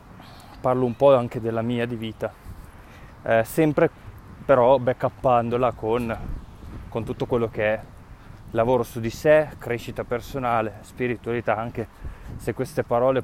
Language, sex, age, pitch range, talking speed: Italian, male, 20-39, 110-130 Hz, 130 wpm